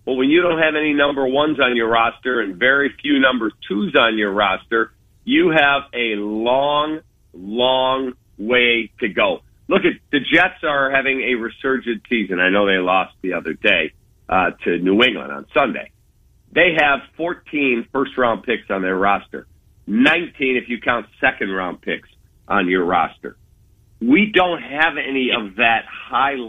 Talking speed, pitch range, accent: 170 wpm, 110-140 Hz, American